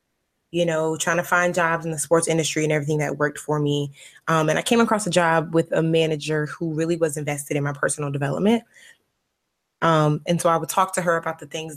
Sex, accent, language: female, American, English